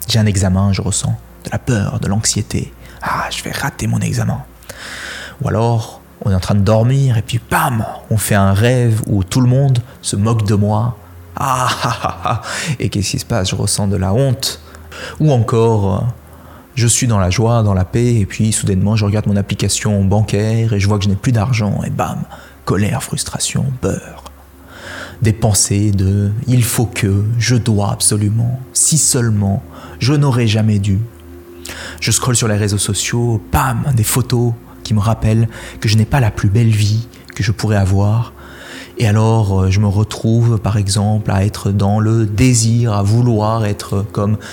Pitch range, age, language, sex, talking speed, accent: 100-115 Hz, 20-39, French, male, 190 wpm, French